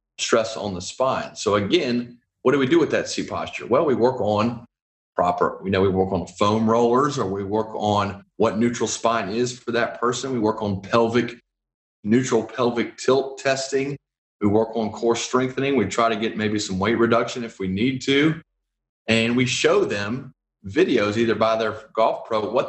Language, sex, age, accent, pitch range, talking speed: English, male, 40-59, American, 100-120 Hz, 195 wpm